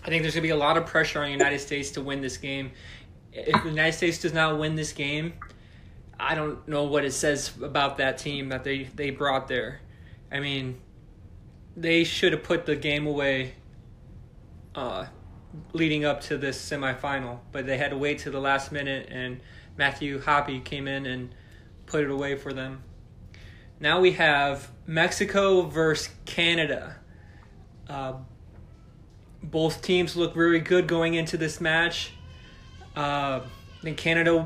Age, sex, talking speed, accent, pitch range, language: 20-39, male, 165 wpm, American, 130-165 Hz, English